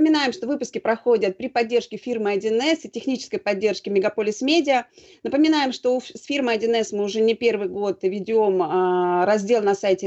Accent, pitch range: native, 190-240 Hz